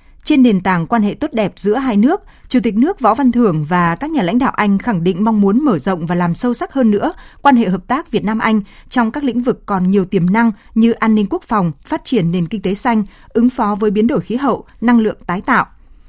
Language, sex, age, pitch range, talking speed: Vietnamese, female, 20-39, 195-240 Hz, 265 wpm